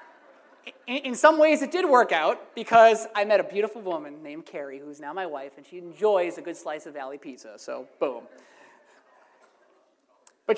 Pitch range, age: 175-265 Hz, 30-49